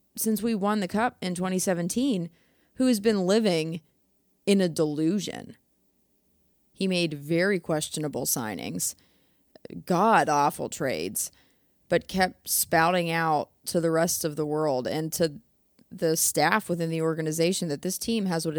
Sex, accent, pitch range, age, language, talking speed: female, American, 155-190 Hz, 30-49, English, 140 wpm